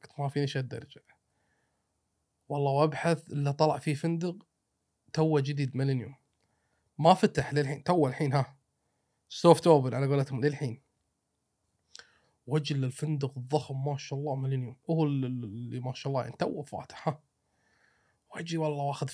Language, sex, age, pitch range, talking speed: Arabic, male, 30-49, 125-155 Hz, 130 wpm